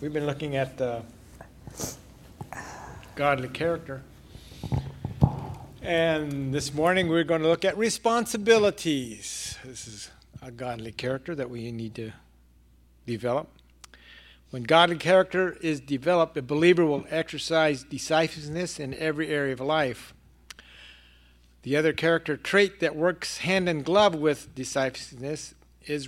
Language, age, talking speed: English, 50-69, 120 wpm